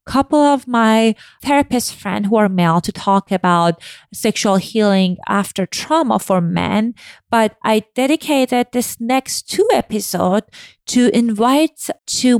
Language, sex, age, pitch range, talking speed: English, female, 30-49, 185-245 Hz, 130 wpm